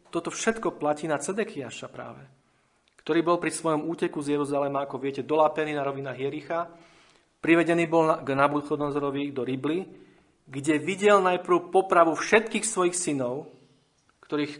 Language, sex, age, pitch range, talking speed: Slovak, male, 40-59, 140-170 Hz, 140 wpm